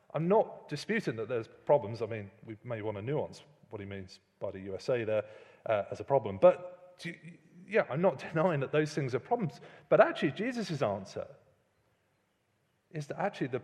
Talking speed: 185 wpm